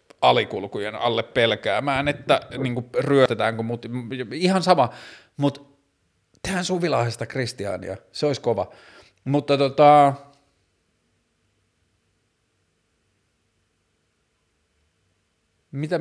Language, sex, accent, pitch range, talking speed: Finnish, male, native, 100-130 Hz, 80 wpm